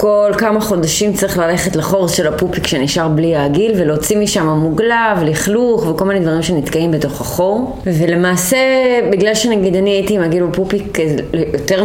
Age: 20-39